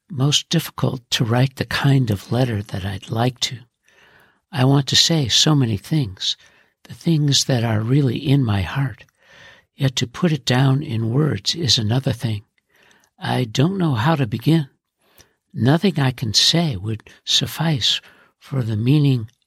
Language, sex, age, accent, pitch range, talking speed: English, male, 60-79, American, 110-140 Hz, 160 wpm